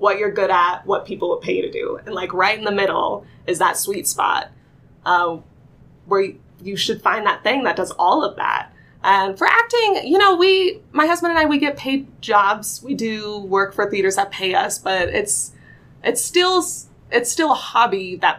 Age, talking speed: 20-39, 210 wpm